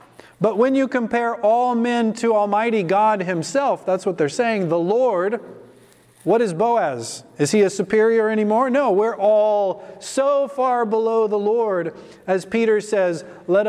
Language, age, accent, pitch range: English, 40-59, American, 160-205 Hz